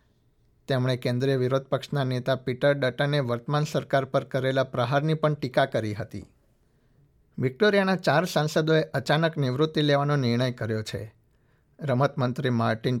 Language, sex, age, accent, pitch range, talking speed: Gujarati, male, 60-79, native, 120-145 Hz, 110 wpm